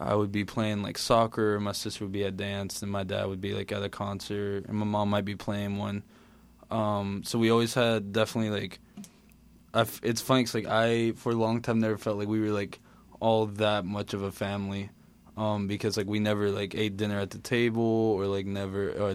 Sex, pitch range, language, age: male, 100-110 Hz, English, 20-39